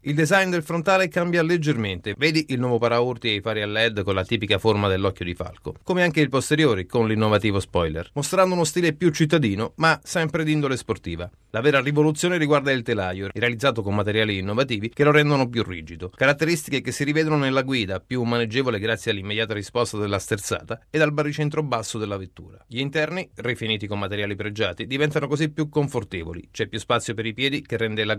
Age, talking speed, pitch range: 30-49, 195 wpm, 110-150 Hz